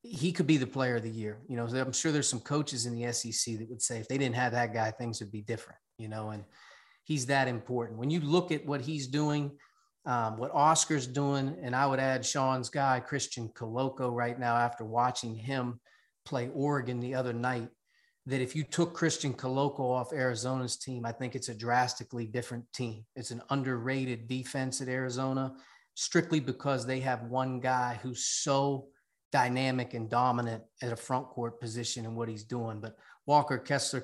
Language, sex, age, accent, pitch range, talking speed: English, male, 30-49, American, 120-135 Hz, 195 wpm